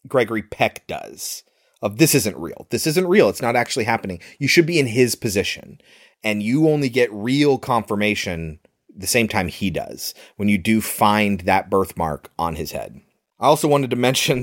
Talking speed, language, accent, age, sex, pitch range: 185 wpm, English, American, 30-49, male, 105-145 Hz